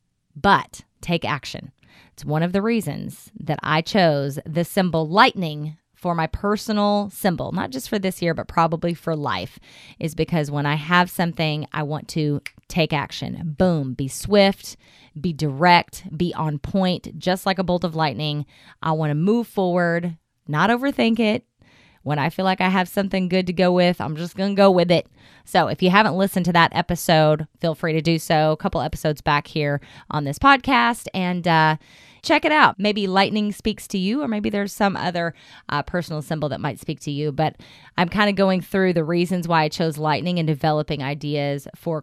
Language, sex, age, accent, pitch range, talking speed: English, female, 20-39, American, 150-190 Hz, 195 wpm